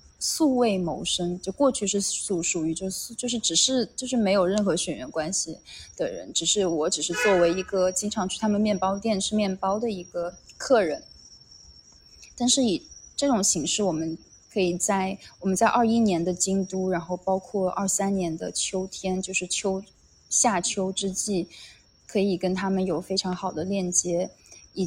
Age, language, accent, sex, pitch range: 20-39, Chinese, native, female, 180-215 Hz